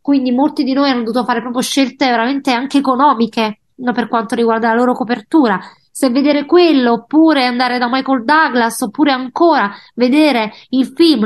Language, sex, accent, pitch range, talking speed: Italian, female, native, 225-280 Hz, 170 wpm